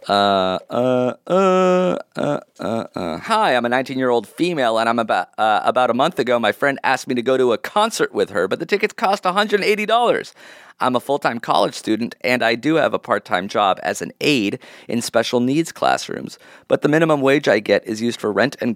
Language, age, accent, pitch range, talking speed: English, 30-49, American, 125-160 Hz, 210 wpm